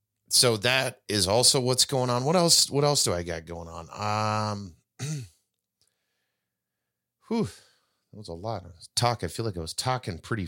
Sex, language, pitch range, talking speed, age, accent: male, English, 90-125 Hz, 170 wpm, 30-49, American